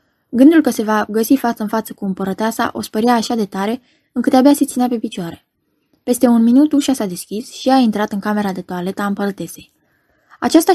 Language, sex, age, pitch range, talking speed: Romanian, female, 20-39, 200-255 Hz, 200 wpm